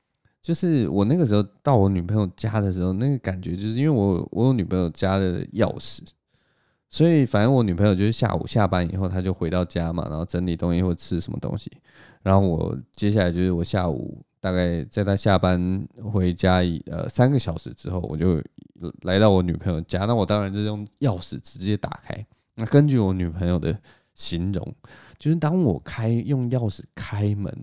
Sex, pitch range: male, 95-130 Hz